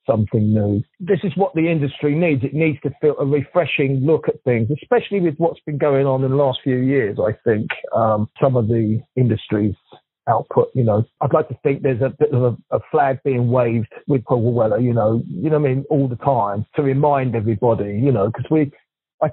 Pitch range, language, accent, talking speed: 135-160 Hz, English, British, 215 wpm